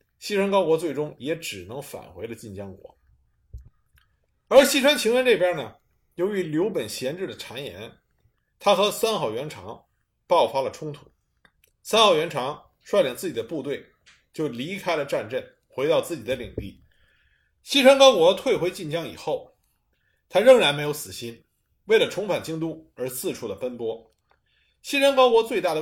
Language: Chinese